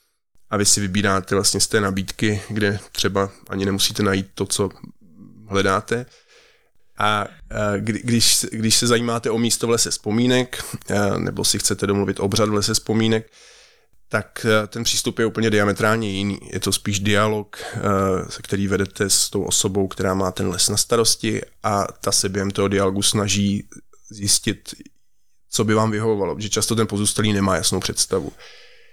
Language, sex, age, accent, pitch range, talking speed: Czech, male, 20-39, native, 100-110 Hz, 160 wpm